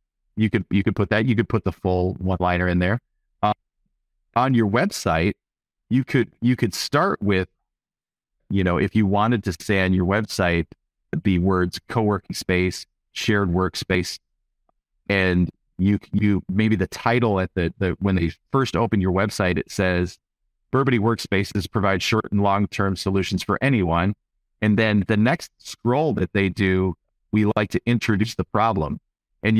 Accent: American